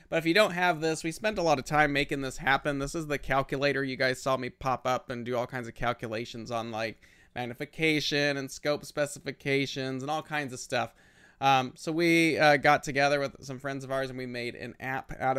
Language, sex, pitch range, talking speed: English, male, 120-145 Hz, 230 wpm